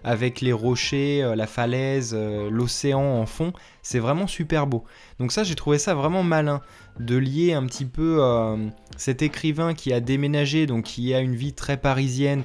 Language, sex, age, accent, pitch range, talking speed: French, male, 20-39, French, 115-150 Hz, 180 wpm